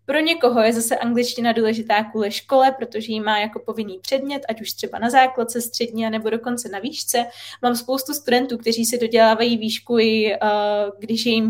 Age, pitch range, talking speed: 20-39, 220-255 Hz, 190 wpm